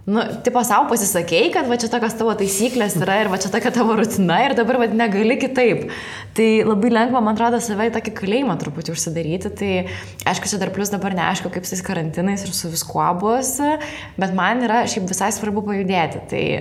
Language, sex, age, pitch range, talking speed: English, female, 20-39, 180-225 Hz, 190 wpm